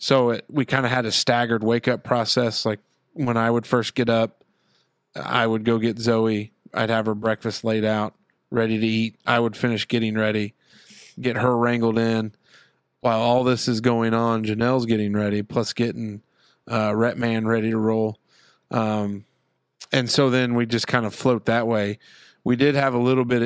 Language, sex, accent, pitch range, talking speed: English, male, American, 110-125 Hz, 190 wpm